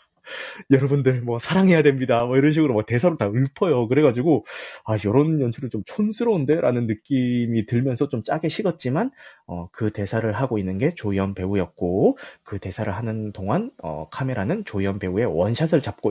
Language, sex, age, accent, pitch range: Korean, male, 30-49, native, 110-165 Hz